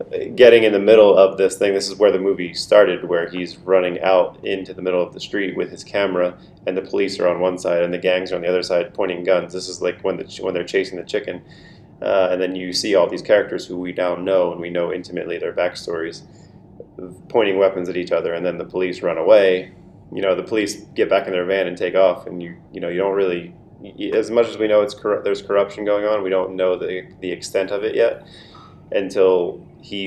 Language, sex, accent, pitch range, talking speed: English, male, American, 90-110 Hz, 240 wpm